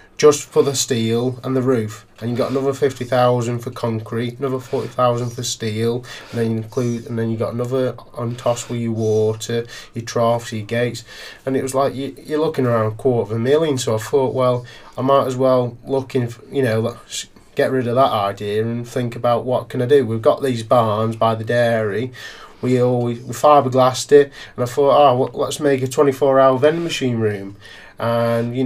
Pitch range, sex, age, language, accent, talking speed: 115-135 Hz, male, 20-39, English, British, 215 wpm